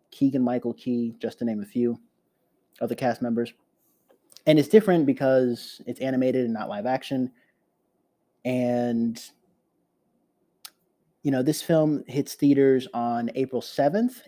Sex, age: male, 20-39